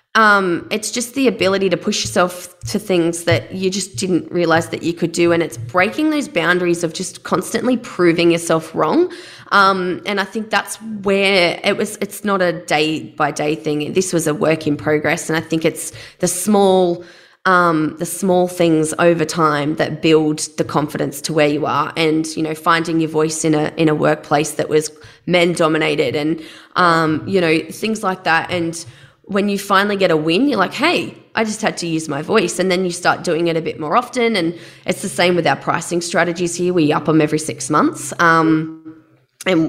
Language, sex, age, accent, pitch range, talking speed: English, female, 20-39, Australian, 155-185 Hz, 205 wpm